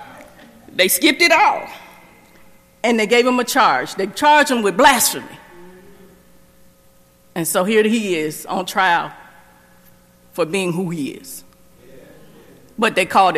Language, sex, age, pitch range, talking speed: English, female, 40-59, 180-245 Hz, 135 wpm